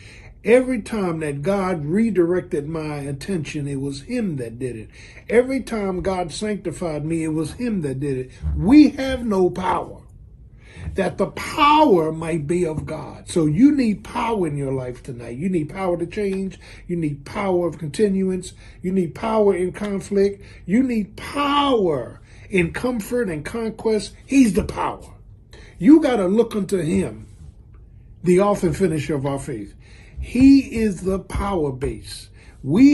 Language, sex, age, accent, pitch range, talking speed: English, male, 50-69, American, 140-200 Hz, 160 wpm